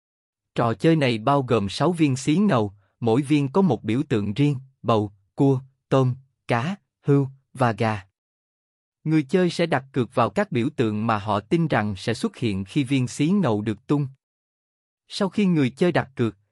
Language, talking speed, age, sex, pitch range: Vietnamese, 185 wpm, 20-39, male, 110-160 Hz